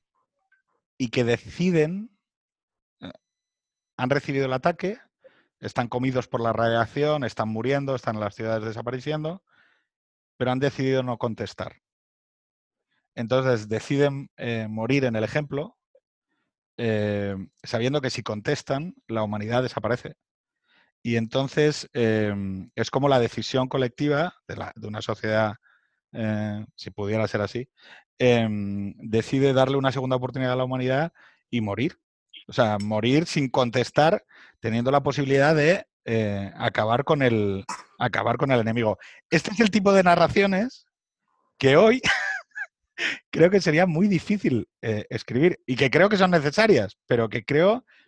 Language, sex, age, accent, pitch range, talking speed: Spanish, male, 30-49, Spanish, 110-155 Hz, 135 wpm